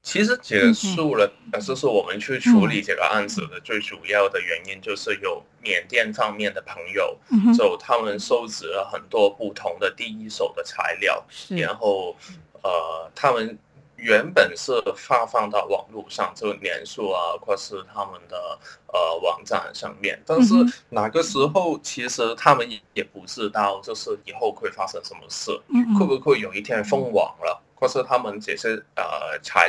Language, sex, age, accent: Chinese, male, 10-29, native